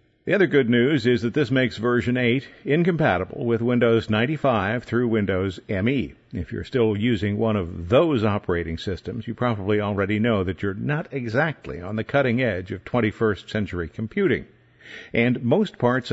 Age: 50-69